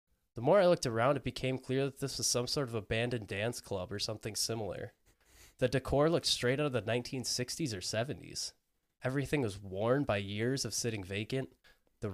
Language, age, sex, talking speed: English, 20-39, male, 195 wpm